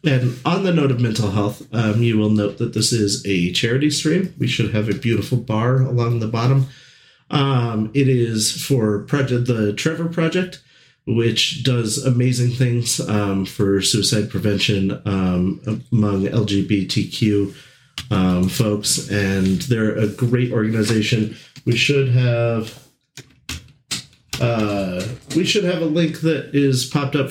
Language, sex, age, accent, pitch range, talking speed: English, male, 40-59, American, 105-140 Hz, 145 wpm